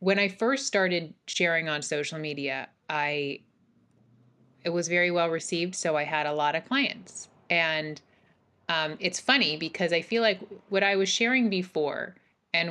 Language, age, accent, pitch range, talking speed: English, 30-49, American, 160-200 Hz, 165 wpm